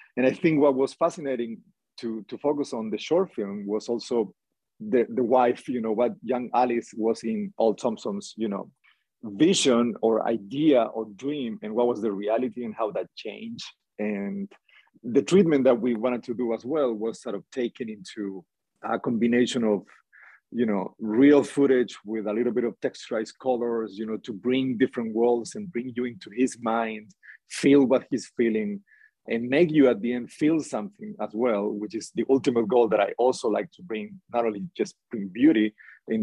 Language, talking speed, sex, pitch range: English, 190 wpm, male, 110-145 Hz